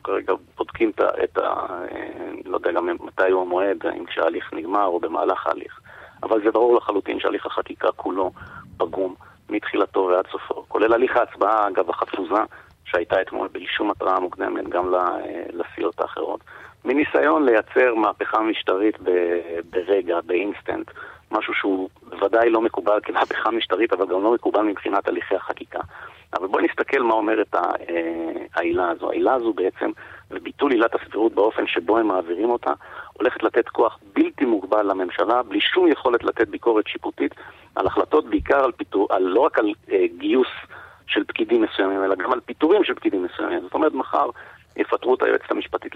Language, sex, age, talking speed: Hebrew, male, 40-59, 160 wpm